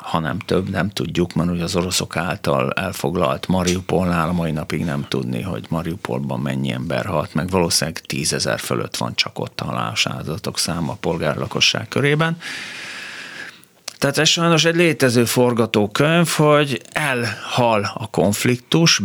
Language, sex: Hungarian, male